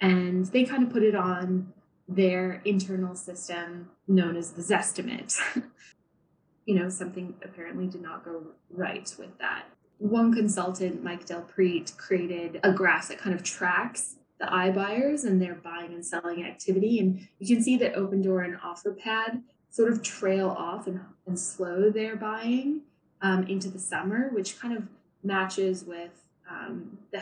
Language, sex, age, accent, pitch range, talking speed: English, female, 20-39, American, 180-215 Hz, 160 wpm